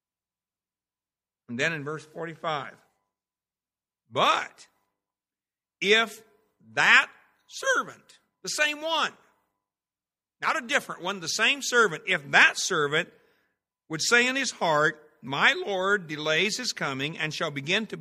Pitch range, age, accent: 135-200 Hz, 60-79, American